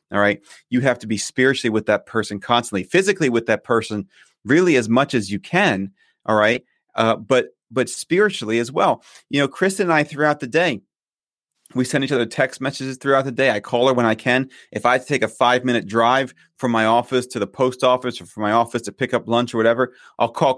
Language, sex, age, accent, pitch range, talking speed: English, male, 30-49, American, 110-135 Hz, 225 wpm